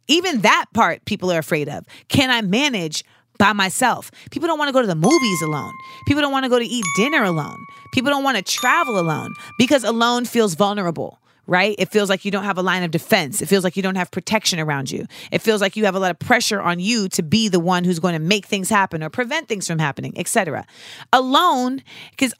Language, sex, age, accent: English, female, 30-49, American